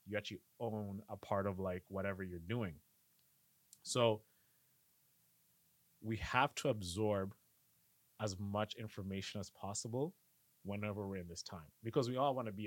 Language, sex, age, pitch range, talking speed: English, male, 30-49, 95-115 Hz, 145 wpm